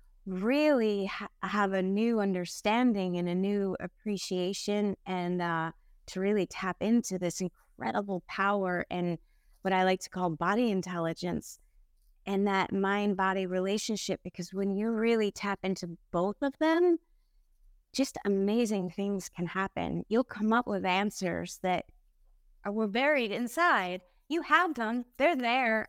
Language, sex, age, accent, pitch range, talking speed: English, female, 20-39, American, 185-230 Hz, 135 wpm